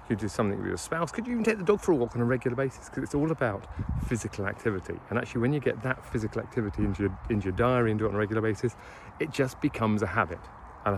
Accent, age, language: British, 40-59, English